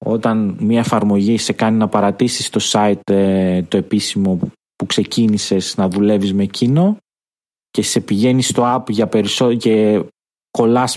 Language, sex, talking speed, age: Greek, male, 140 wpm, 30-49